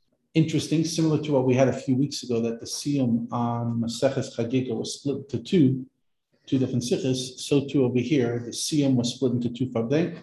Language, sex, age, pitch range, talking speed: English, male, 50-69, 115-145 Hz, 195 wpm